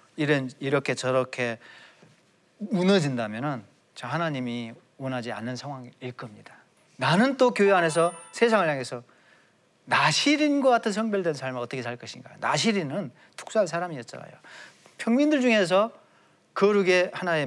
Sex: male